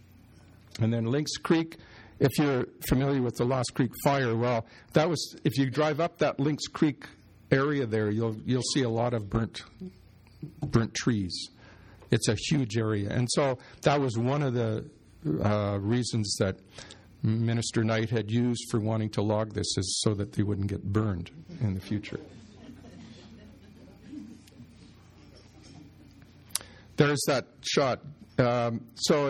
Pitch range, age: 105-135 Hz, 50-69